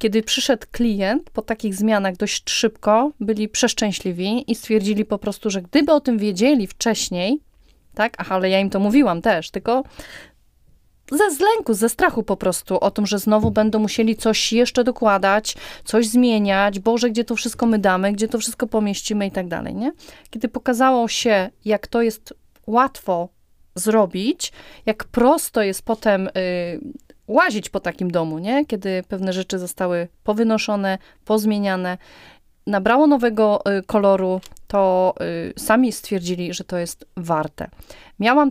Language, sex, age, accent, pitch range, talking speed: Polish, female, 30-49, native, 185-235 Hz, 150 wpm